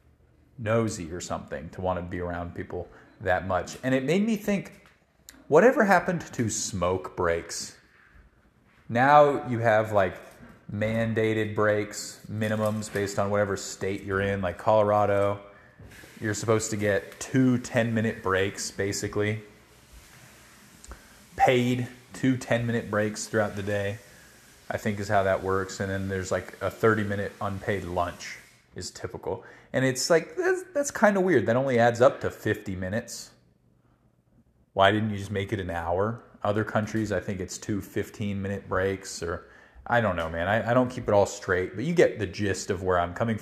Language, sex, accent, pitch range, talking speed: English, male, American, 95-115 Hz, 165 wpm